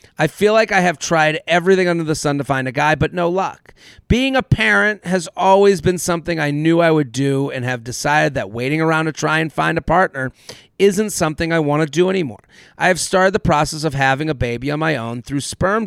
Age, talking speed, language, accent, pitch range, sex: 40-59, 235 wpm, English, American, 135-175 Hz, male